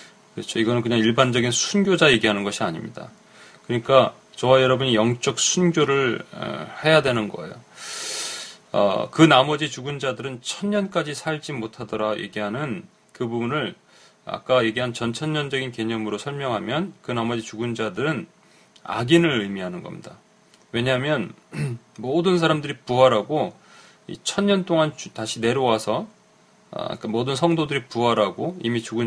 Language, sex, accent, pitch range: Korean, male, native, 110-155 Hz